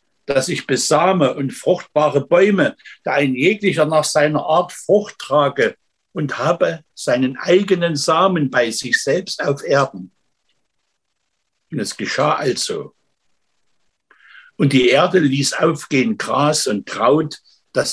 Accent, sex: German, male